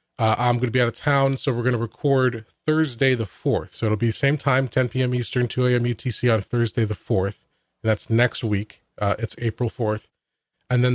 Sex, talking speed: male, 230 wpm